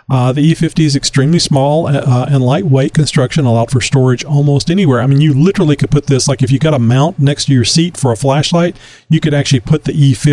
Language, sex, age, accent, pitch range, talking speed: English, male, 40-59, American, 125-155 Hz, 245 wpm